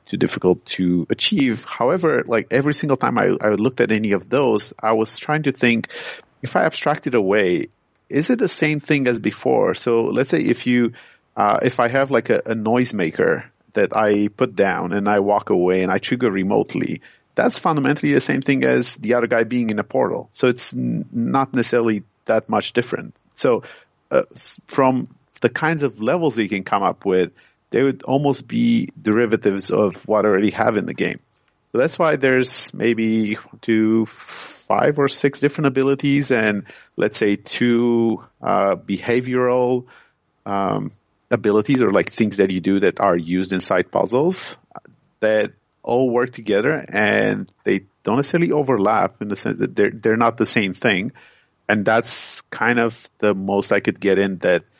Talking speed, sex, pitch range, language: 175 wpm, male, 100-130 Hz, English